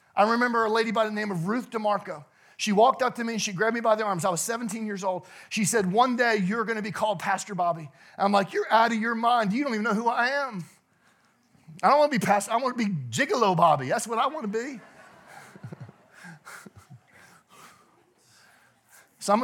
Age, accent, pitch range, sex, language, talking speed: 40-59, American, 190-240 Hz, male, English, 220 wpm